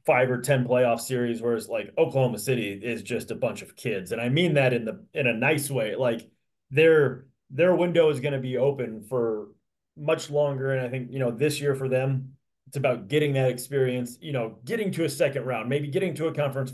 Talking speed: 230 wpm